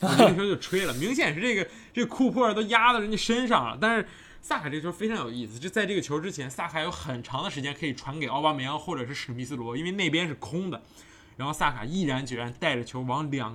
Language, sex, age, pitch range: Chinese, male, 20-39, 125-190 Hz